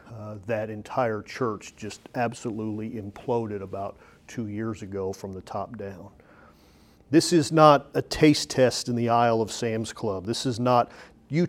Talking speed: 160 wpm